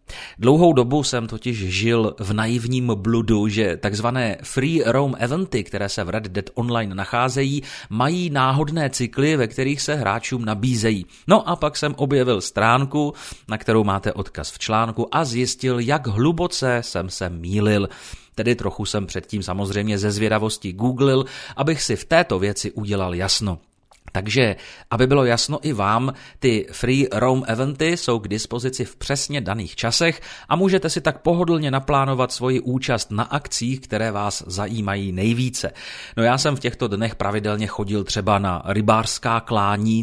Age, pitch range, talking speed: 30-49, 105-130 Hz, 155 wpm